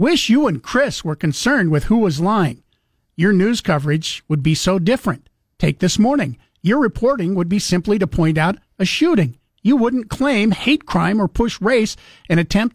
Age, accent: 50-69, American